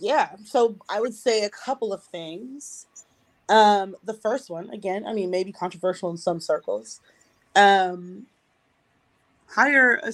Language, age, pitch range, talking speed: English, 20-39, 185-225 Hz, 140 wpm